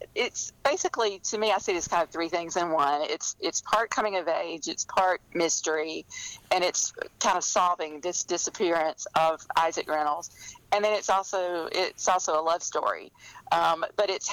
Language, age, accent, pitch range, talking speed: English, 50-69, American, 160-200 Hz, 185 wpm